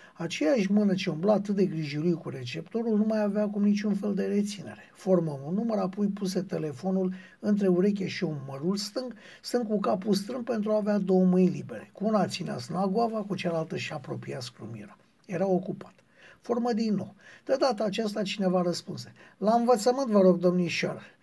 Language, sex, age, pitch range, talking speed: Romanian, male, 60-79, 175-215 Hz, 180 wpm